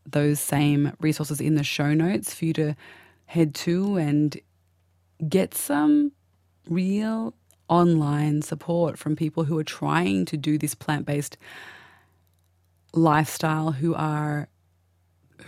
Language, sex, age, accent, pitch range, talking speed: English, female, 20-39, Australian, 140-165 Hz, 115 wpm